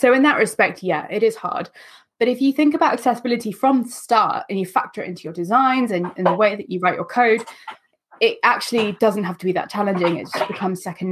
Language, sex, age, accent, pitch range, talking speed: English, female, 20-39, British, 185-225 Hz, 245 wpm